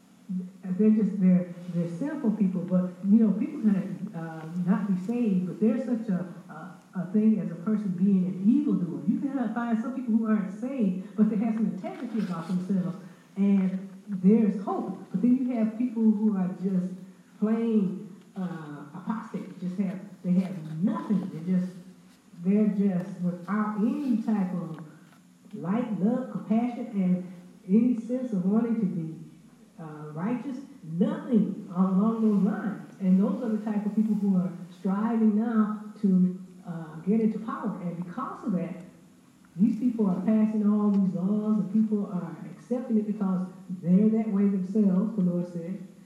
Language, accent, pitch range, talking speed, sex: English, American, 185-220 Hz, 165 wpm, female